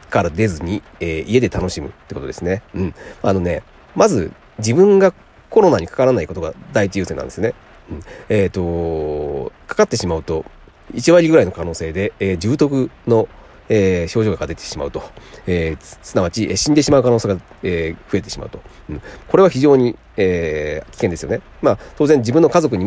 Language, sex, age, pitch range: Japanese, male, 40-59, 80-125 Hz